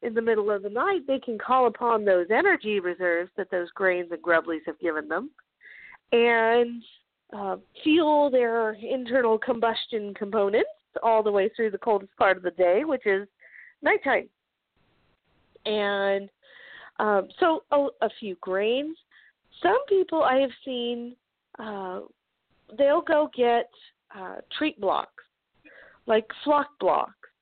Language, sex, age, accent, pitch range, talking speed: English, female, 40-59, American, 205-260 Hz, 135 wpm